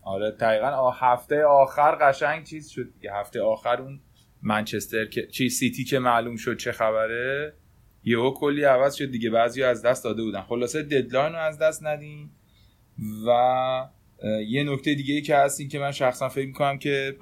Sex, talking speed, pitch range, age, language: male, 180 wpm, 110-135 Hz, 30-49, Persian